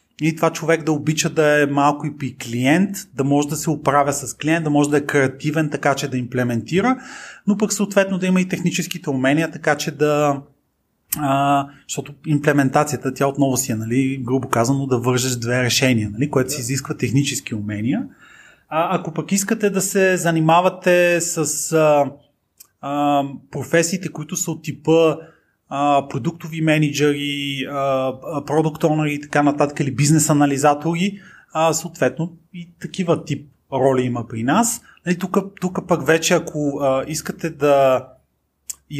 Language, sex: Bulgarian, male